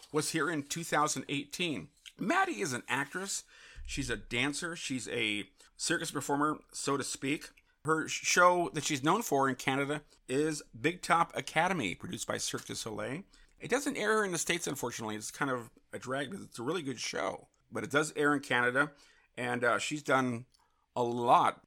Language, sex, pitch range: English, male, 125-160 Hz